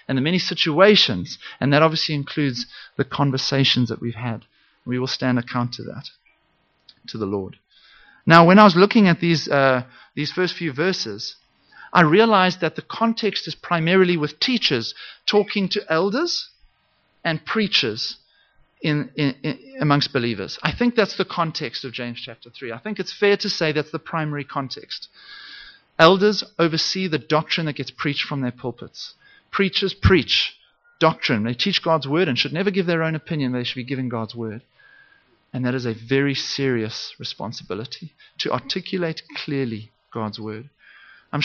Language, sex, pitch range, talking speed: English, male, 125-175 Hz, 165 wpm